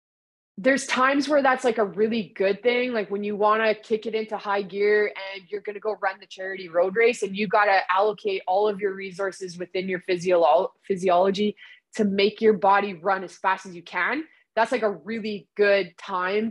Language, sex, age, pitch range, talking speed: English, female, 20-39, 190-230 Hz, 205 wpm